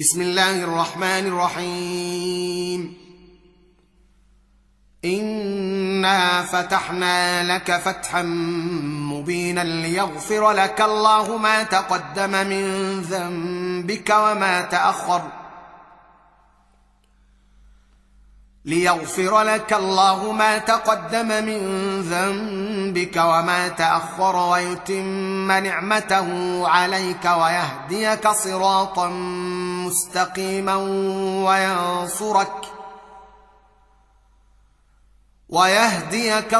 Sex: male